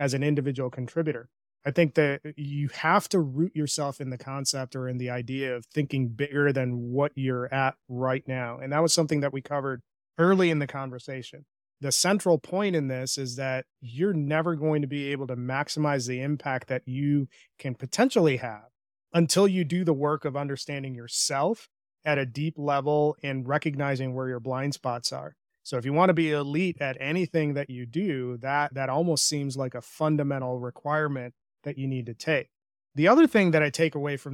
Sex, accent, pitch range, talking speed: male, American, 130-155 Hz, 195 wpm